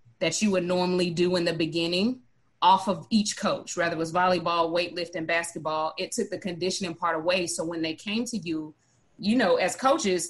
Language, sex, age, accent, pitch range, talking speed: English, female, 30-49, American, 165-195 Hz, 200 wpm